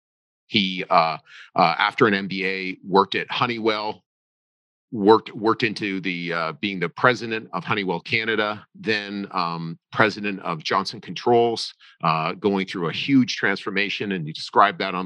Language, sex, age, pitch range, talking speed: English, male, 40-59, 90-110 Hz, 150 wpm